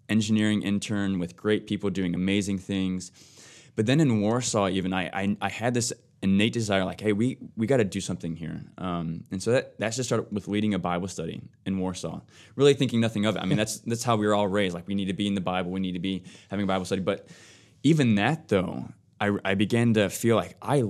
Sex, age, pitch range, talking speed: male, 20-39, 95-115 Hz, 240 wpm